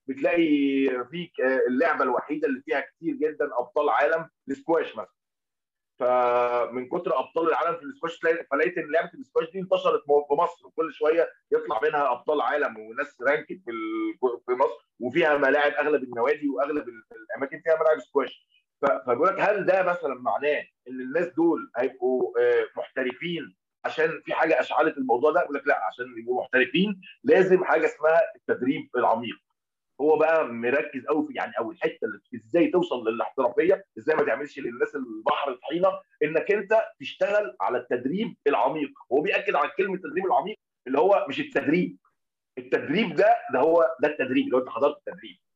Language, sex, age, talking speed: Arabic, male, 30-49, 155 wpm